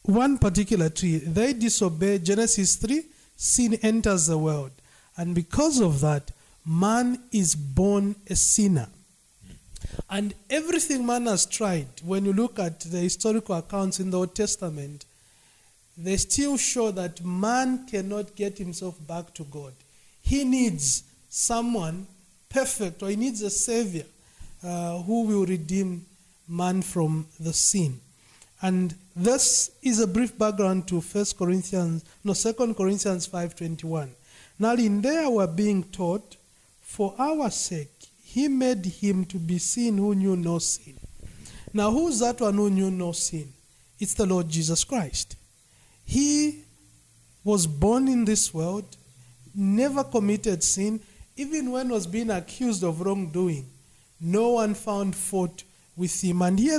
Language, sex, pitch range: English, male, 170-220 Hz